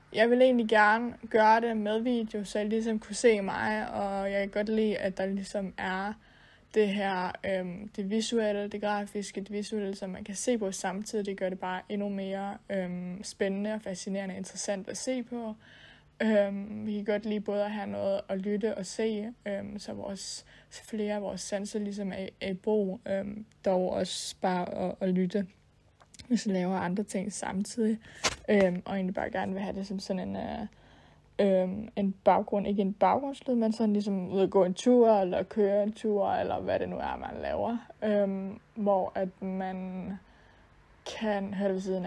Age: 20-39